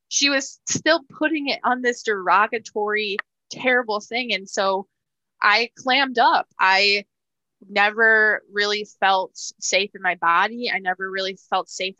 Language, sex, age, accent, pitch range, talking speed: English, female, 20-39, American, 185-220 Hz, 140 wpm